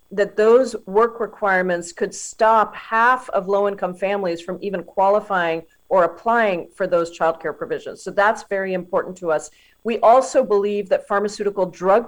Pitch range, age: 185-225 Hz, 40-59